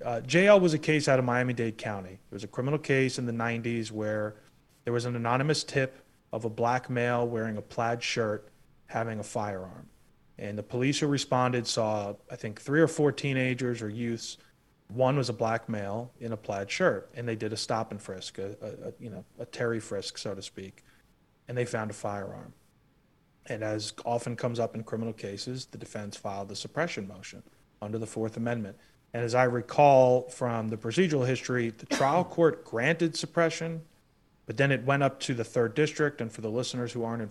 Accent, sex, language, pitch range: American, male, English, 115-140 Hz